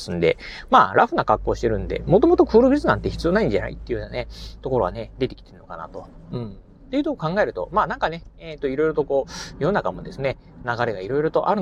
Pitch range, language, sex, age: 125-210 Hz, Japanese, male, 30-49